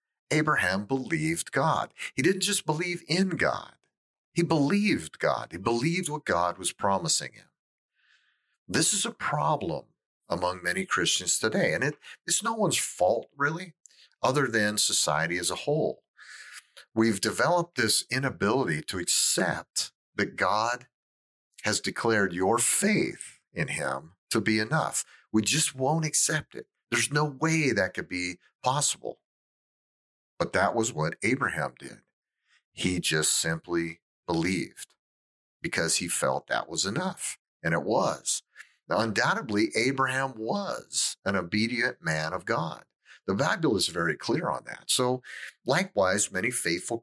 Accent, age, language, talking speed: American, 50-69, English, 135 wpm